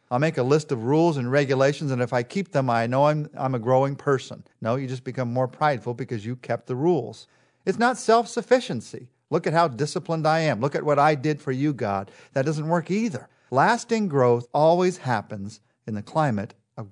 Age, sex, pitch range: 50-69, male, 125-170 Hz